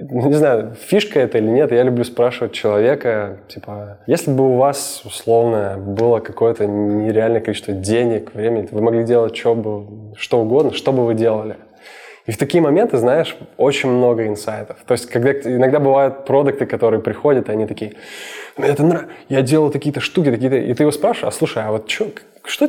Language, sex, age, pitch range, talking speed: Russian, male, 20-39, 110-140 Hz, 185 wpm